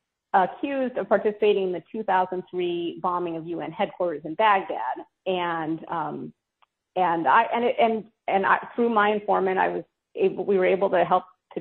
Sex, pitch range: female, 180-210 Hz